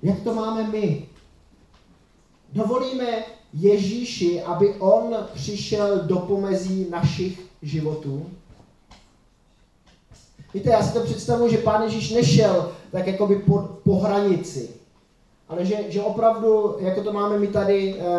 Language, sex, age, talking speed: Czech, male, 30-49, 120 wpm